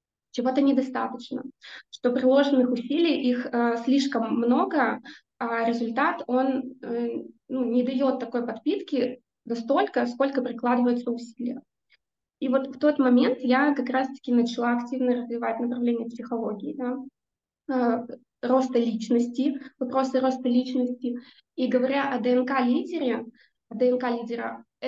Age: 20-39